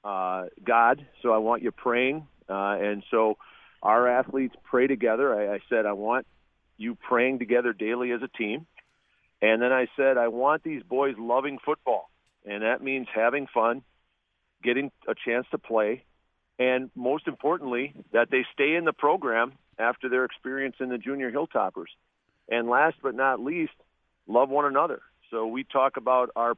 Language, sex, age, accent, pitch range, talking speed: English, male, 40-59, American, 110-135 Hz, 165 wpm